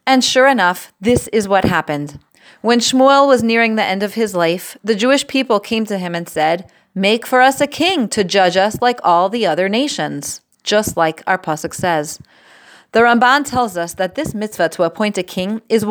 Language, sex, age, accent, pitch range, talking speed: English, female, 30-49, American, 170-235 Hz, 205 wpm